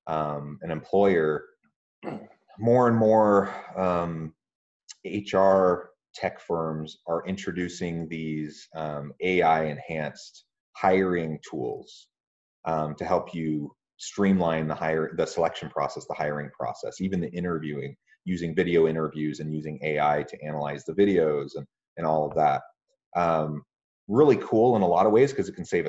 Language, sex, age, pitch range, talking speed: English, male, 30-49, 75-95 Hz, 140 wpm